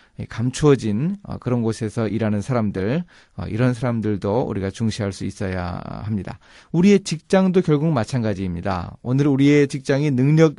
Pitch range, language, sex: 105-145 Hz, Korean, male